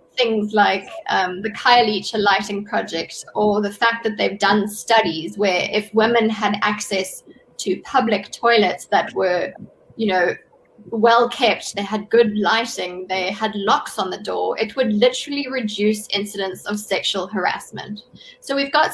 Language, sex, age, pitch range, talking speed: English, female, 20-39, 200-240 Hz, 155 wpm